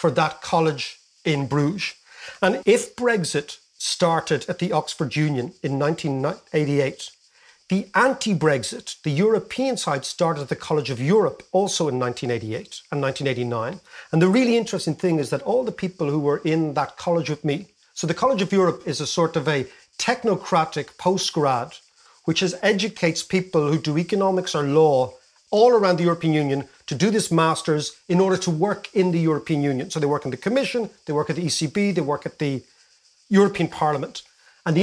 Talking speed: 180 wpm